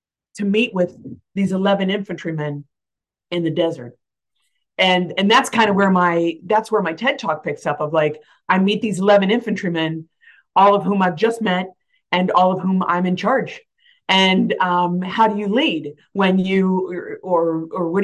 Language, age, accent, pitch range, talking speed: English, 30-49, American, 170-210 Hz, 180 wpm